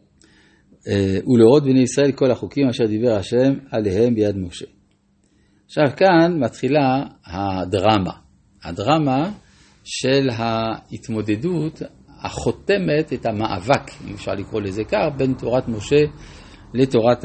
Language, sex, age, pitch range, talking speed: Hebrew, male, 50-69, 105-150 Hz, 105 wpm